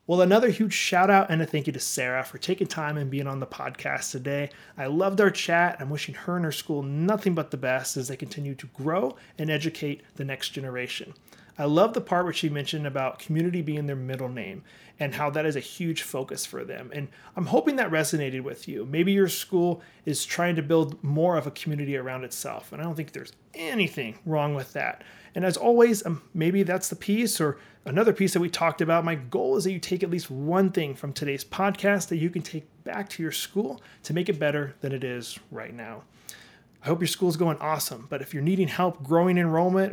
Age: 30-49